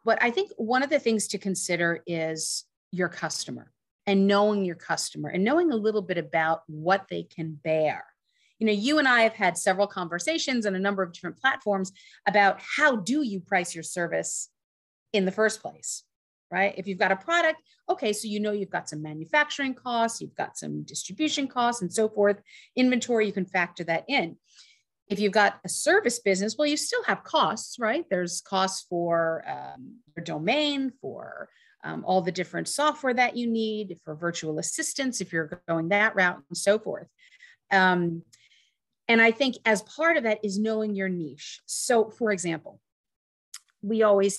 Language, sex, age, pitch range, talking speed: English, female, 40-59, 175-235 Hz, 185 wpm